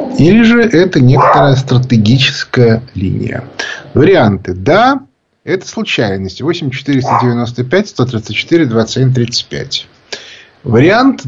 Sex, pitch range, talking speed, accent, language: male, 115-175 Hz, 70 wpm, native, Russian